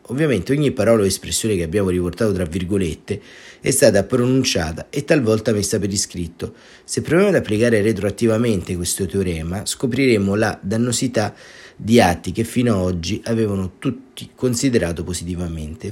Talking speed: 145 wpm